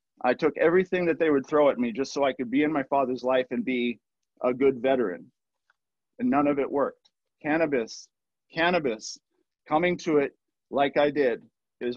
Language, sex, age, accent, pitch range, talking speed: English, male, 40-59, American, 130-155 Hz, 185 wpm